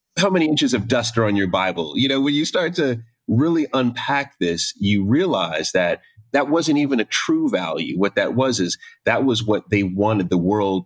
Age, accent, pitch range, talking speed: 30-49, American, 90-140 Hz, 210 wpm